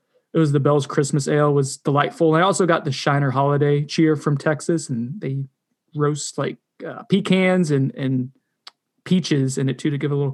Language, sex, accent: English, male, American